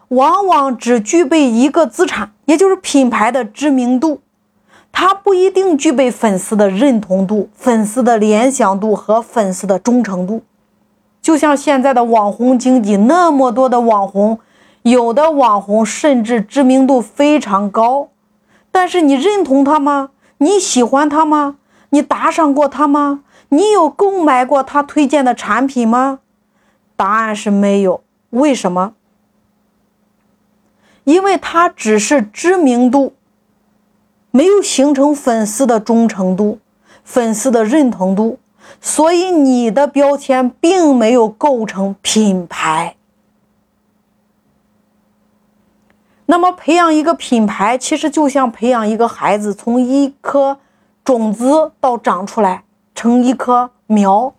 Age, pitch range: 30-49, 225-295 Hz